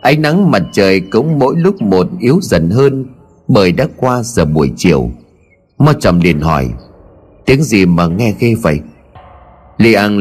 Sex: male